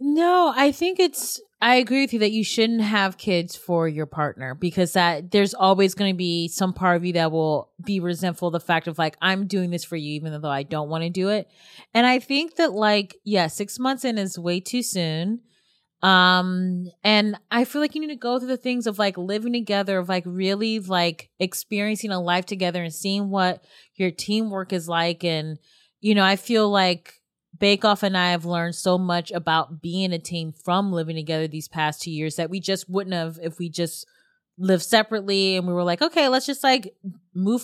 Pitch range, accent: 175-225 Hz, American